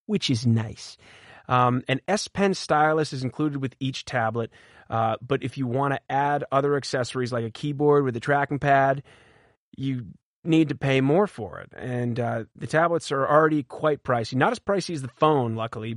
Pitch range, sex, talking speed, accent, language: 115-150 Hz, male, 190 wpm, American, English